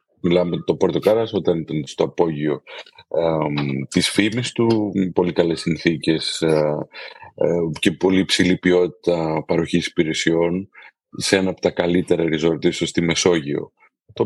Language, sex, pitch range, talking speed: Greek, male, 85-110 Hz, 130 wpm